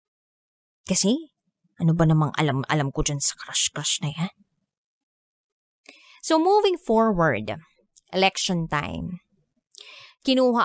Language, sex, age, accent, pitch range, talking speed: Filipino, female, 20-39, native, 170-230 Hz, 100 wpm